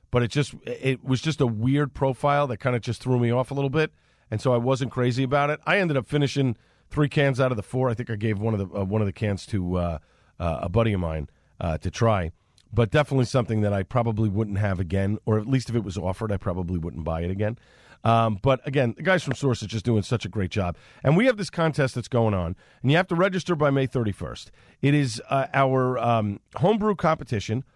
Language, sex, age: English, male, 40-59